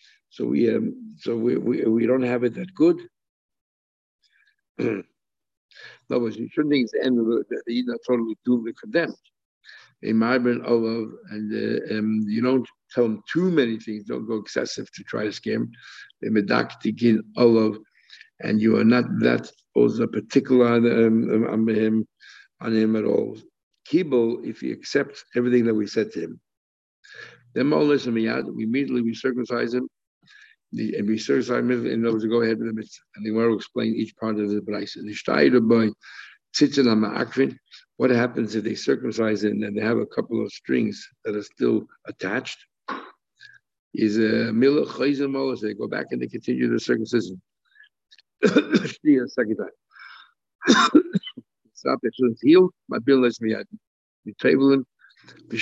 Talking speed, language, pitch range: 150 wpm, English, 110-130 Hz